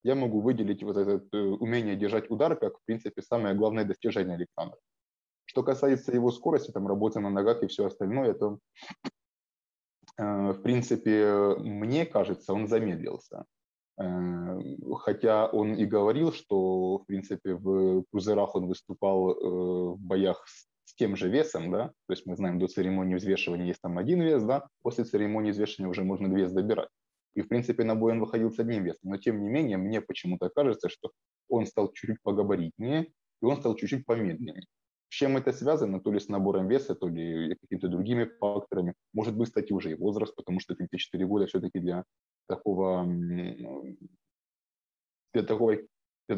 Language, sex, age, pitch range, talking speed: Ukrainian, male, 20-39, 95-115 Hz, 165 wpm